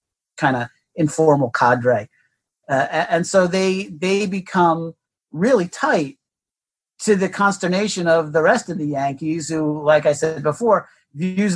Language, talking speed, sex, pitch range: English, 145 wpm, male, 150-185 Hz